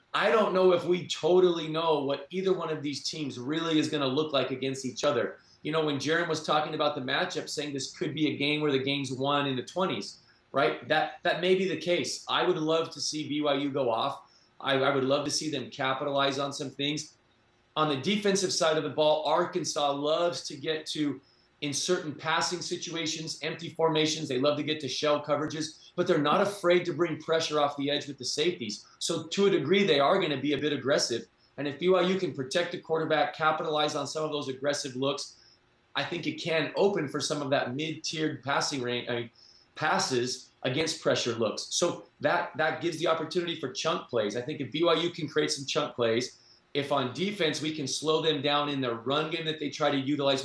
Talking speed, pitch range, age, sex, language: 220 wpm, 140-160 Hz, 30-49, male, English